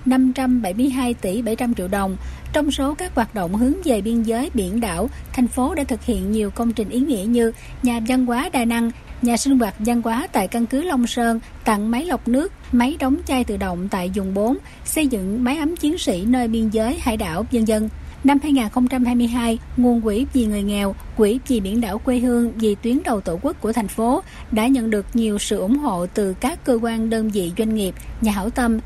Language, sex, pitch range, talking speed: Vietnamese, female, 215-255 Hz, 220 wpm